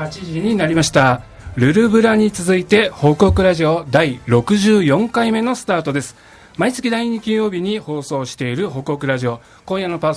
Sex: male